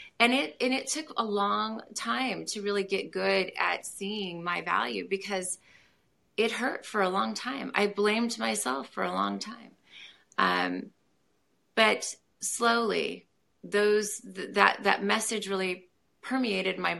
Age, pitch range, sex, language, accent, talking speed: 30-49, 180-215 Hz, female, English, American, 145 wpm